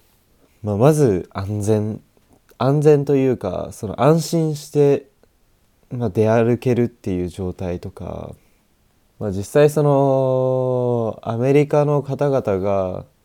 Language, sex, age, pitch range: Japanese, male, 20-39, 95-115 Hz